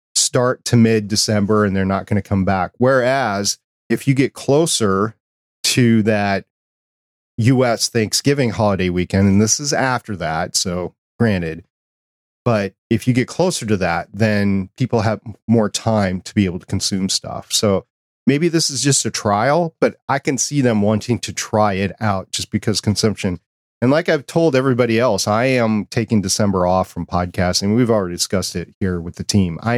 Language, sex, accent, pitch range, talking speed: English, male, American, 100-120 Hz, 175 wpm